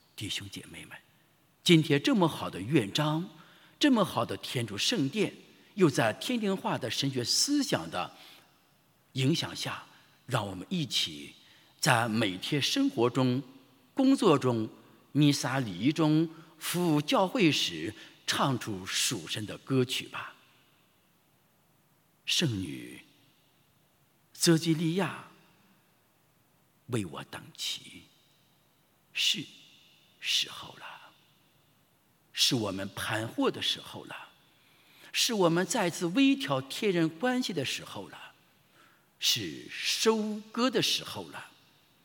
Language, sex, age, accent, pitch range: English, male, 50-69, Chinese, 130-205 Hz